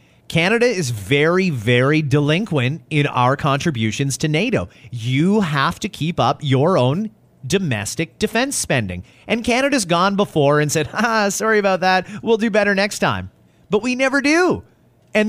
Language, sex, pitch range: English, male, 140-215 Hz